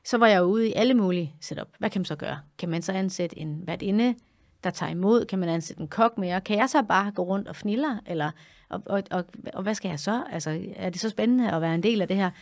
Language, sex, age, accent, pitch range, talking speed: English, female, 30-49, Danish, 165-210 Hz, 280 wpm